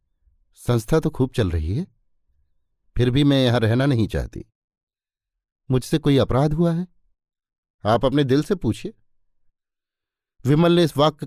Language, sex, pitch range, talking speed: Hindi, male, 100-135 Hz, 145 wpm